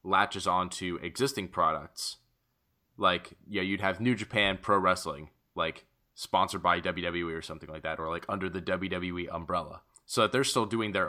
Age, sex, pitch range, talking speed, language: 20-39, male, 85-100 Hz, 175 wpm, English